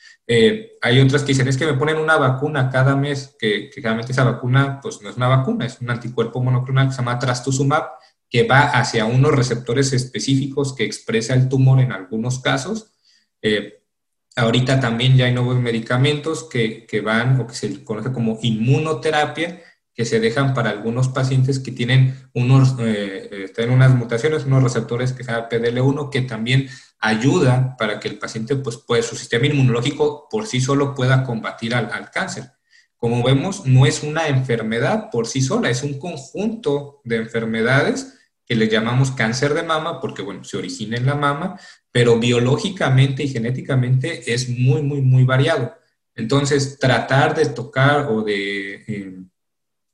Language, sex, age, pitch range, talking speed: Spanish, male, 40-59, 120-145 Hz, 170 wpm